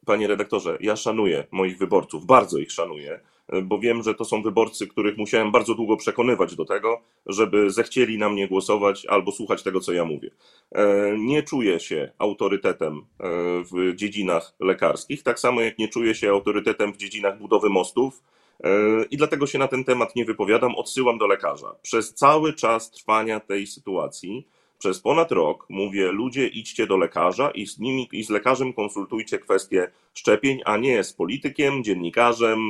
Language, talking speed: Polish, 165 wpm